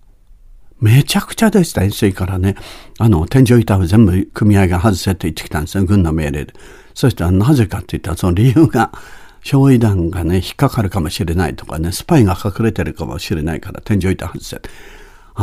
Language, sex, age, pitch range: Japanese, male, 60-79, 95-145 Hz